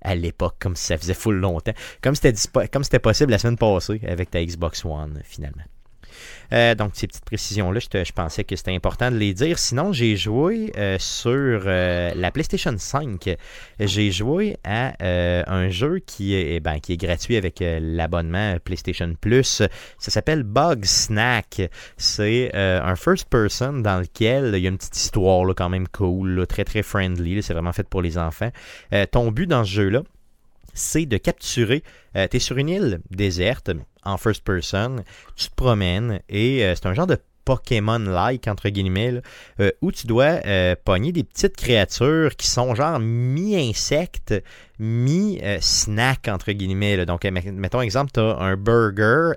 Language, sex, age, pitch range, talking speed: French, male, 30-49, 90-120 Hz, 170 wpm